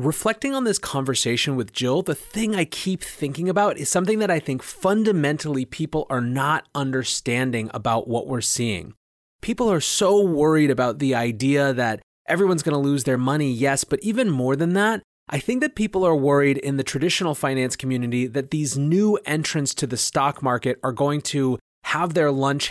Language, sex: English, male